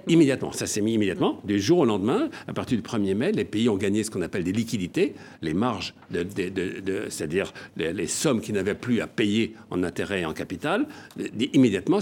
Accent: French